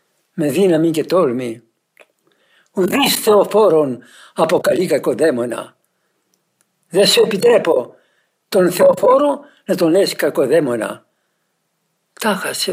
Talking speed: 85 wpm